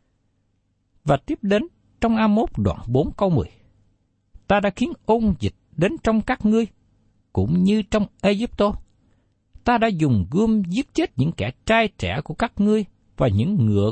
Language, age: Vietnamese, 60-79